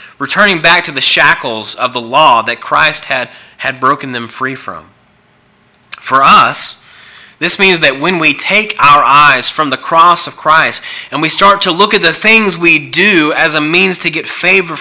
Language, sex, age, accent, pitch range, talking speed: English, male, 30-49, American, 120-170 Hz, 190 wpm